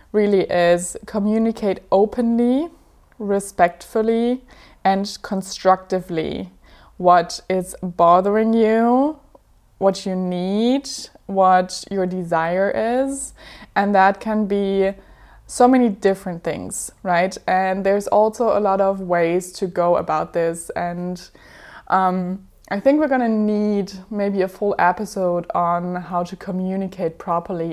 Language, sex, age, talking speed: English, female, 20-39, 120 wpm